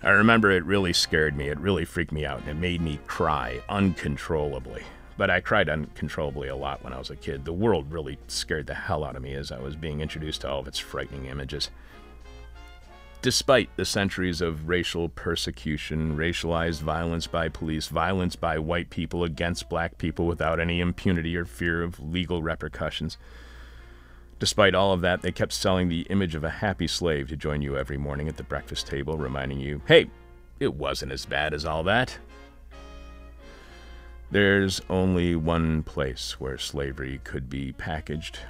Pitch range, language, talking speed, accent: 70-85 Hz, English, 180 wpm, American